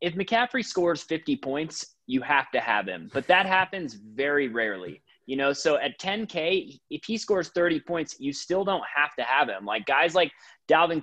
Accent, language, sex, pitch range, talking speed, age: American, English, male, 130-160 Hz, 195 wpm, 20-39